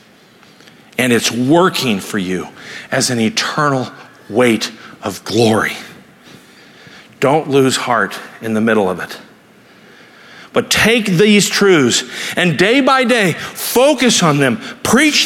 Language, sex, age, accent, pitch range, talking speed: English, male, 50-69, American, 195-240 Hz, 120 wpm